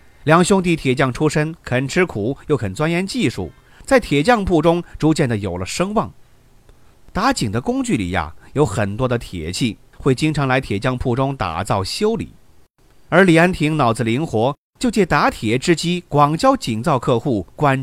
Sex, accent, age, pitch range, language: male, native, 30-49, 120-180 Hz, Chinese